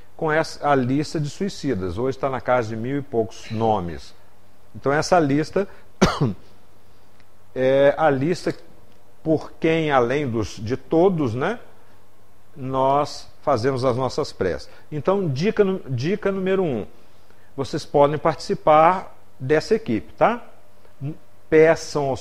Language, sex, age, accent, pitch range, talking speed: Portuguese, male, 50-69, Brazilian, 100-155 Hz, 120 wpm